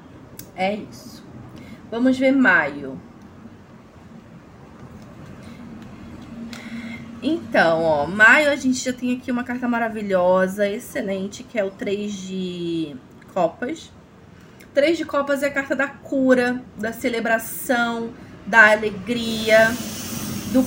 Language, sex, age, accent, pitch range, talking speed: Portuguese, female, 20-39, Brazilian, 205-245 Hz, 105 wpm